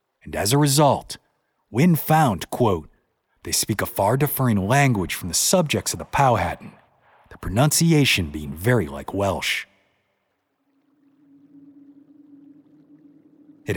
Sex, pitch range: male, 115-185 Hz